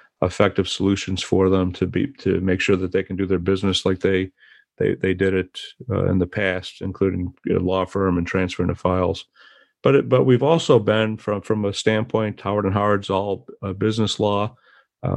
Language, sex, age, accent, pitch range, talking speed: English, male, 40-59, American, 95-105 Hz, 210 wpm